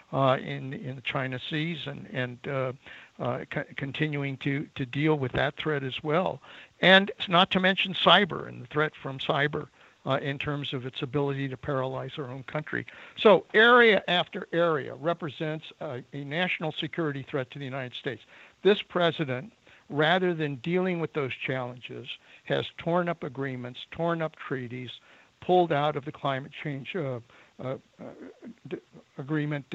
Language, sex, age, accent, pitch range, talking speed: English, male, 60-79, American, 135-170 Hz, 165 wpm